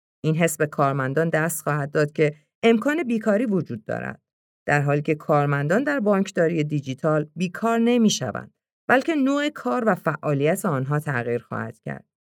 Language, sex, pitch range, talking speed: Persian, female, 145-215 Hz, 145 wpm